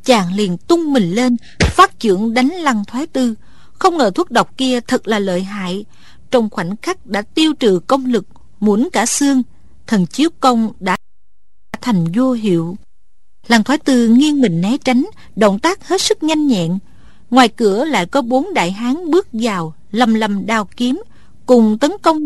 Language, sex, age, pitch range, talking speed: Vietnamese, female, 50-69, 210-280 Hz, 180 wpm